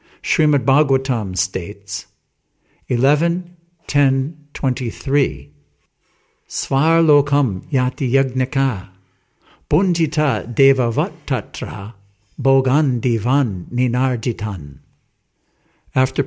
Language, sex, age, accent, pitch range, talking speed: English, male, 60-79, American, 115-145 Hz, 50 wpm